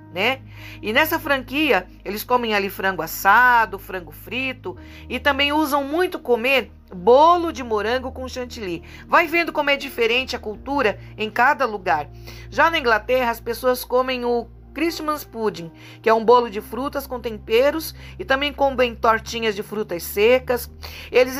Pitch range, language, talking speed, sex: 215-285 Hz, Portuguese, 155 wpm, female